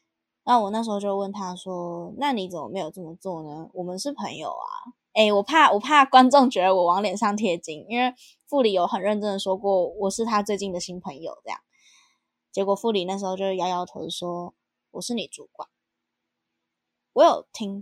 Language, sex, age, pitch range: Chinese, female, 10-29, 185-240 Hz